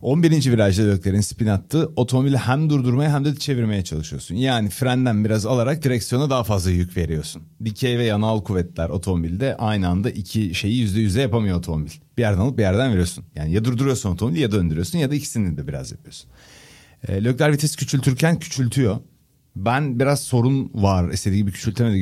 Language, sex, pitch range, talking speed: Turkish, male, 95-130 Hz, 175 wpm